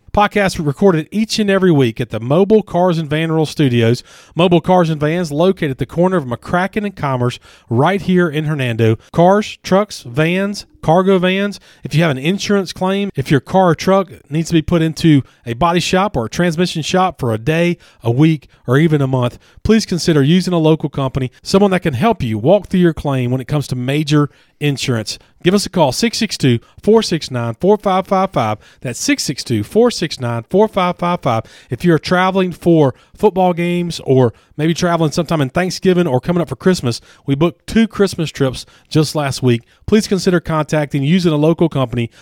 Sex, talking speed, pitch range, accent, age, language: male, 185 wpm, 135-185 Hz, American, 40-59, English